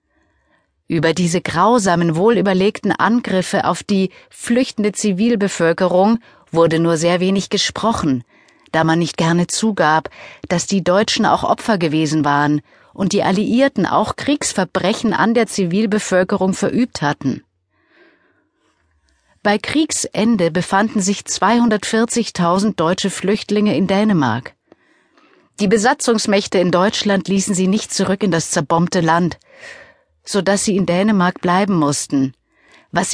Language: German